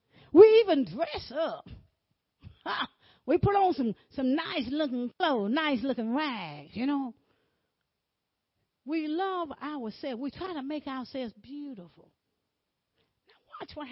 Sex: female